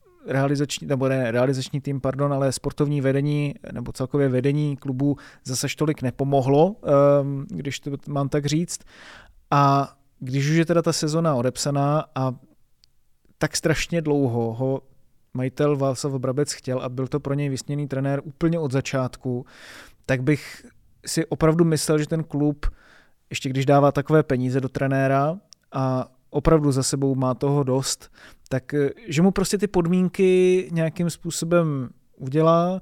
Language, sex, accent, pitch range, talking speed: Czech, male, native, 135-155 Hz, 145 wpm